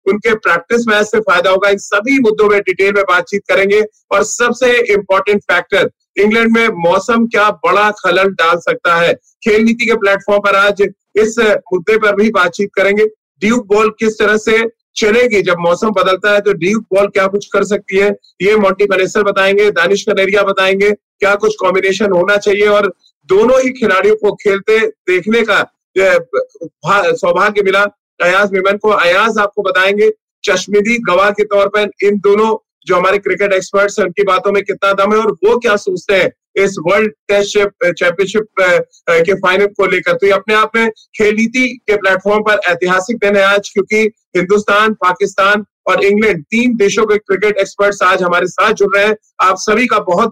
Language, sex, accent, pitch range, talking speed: Hindi, male, native, 195-215 Hz, 175 wpm